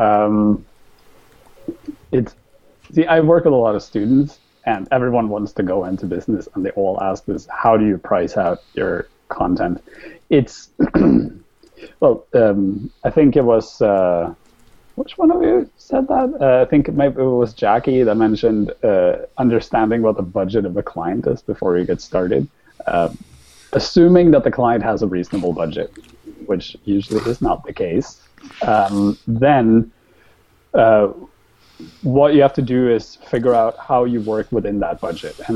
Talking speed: 165 wpm